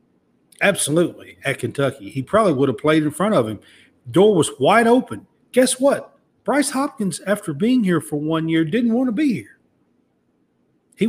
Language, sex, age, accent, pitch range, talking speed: English, male, 50-69, American, 150-215 Hz, 175 wpm